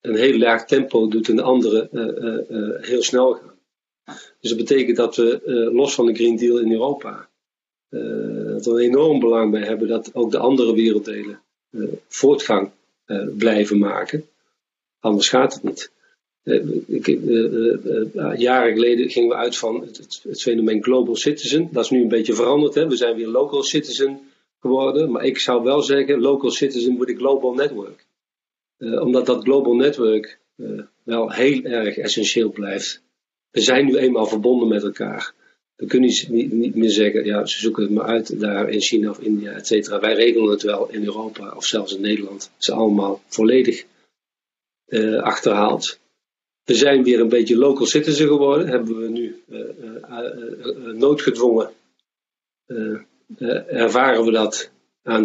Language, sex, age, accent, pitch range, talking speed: Dutch, male, 40-59, Dutch, 110-130 Hz, 175 wpm